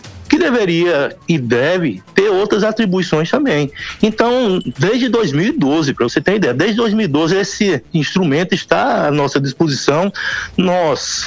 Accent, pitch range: Brazilian, 135-200 Hz